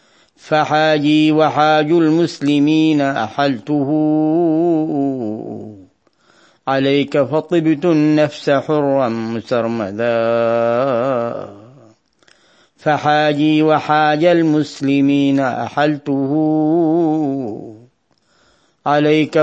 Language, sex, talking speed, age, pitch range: Arabic, male, 45 wpm, 40-59, 120-155 Hz